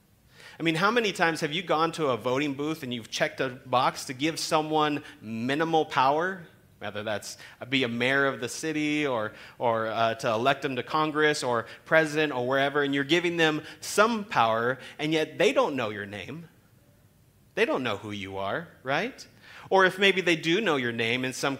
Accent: American